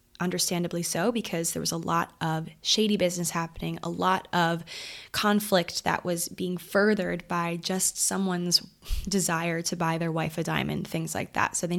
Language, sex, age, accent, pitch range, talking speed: English, female, 20-39, American, 165-195 Hz, 175 wpm